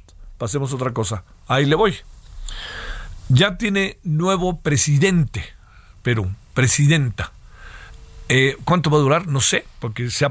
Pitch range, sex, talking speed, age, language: 110-145 Hz, male, 115 wpm, 50-69, Spanish